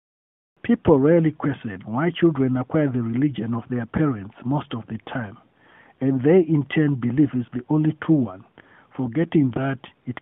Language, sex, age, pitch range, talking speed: English, male, 50-69, 115-155 Hz, 165 wpm